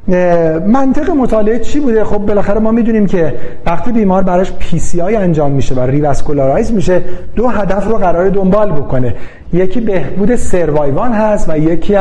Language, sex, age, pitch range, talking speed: Persian, male, 40-59, 150-205 Hz, 150 wpm